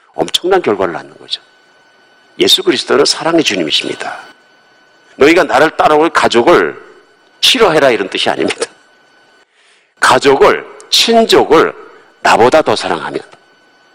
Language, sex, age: Korean, male, 50-69